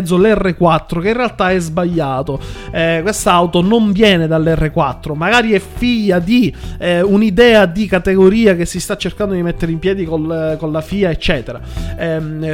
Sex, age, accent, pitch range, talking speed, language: male, 30-49, native, 155-205 Hz, 160 wpm, Italian